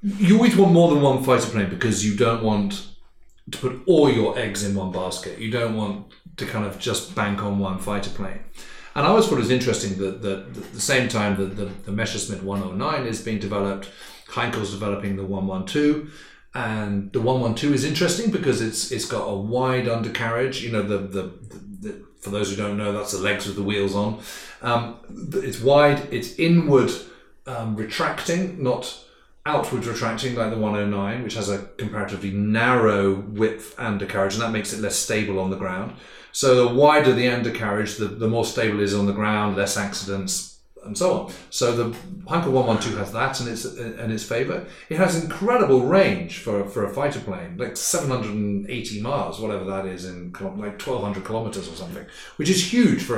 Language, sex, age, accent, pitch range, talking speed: English, male, 30-49, British, 100-130 Hz, 205 wpm